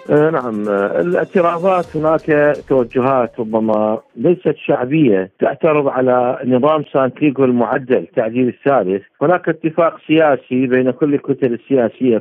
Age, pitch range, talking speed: 50-69, 130-165 Hz, 105 wpm